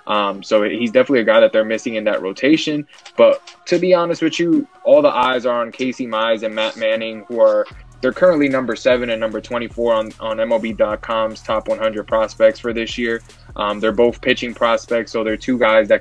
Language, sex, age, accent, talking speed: English, male, 20-39, American, 215 wpm